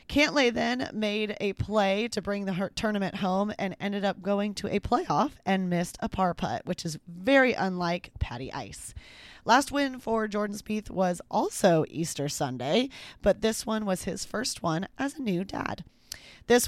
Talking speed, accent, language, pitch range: 175 wpm, American, English, 170-225 Hz